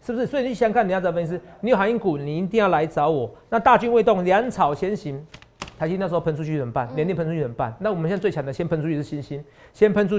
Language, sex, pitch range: Chinese, male, 150-220 Hz